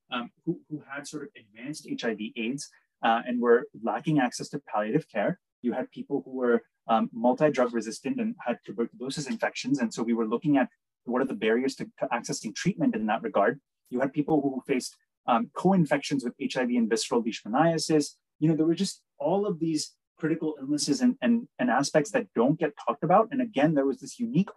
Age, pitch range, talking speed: 20-39, 125-170 Hz, 200 wpm